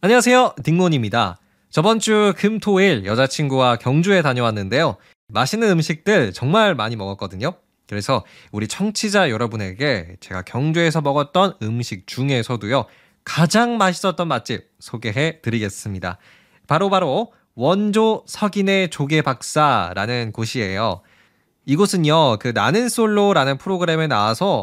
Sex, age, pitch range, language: male, 20-39, 120-180 Hz, Korean